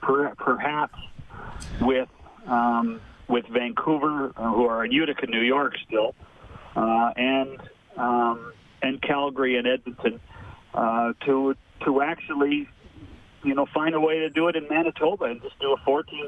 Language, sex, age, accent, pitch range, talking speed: English, male, 40-59, American, 125-170 Hz, 140 wpm